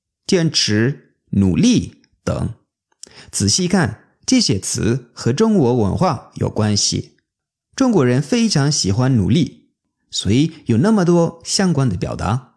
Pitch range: 105-150 Hz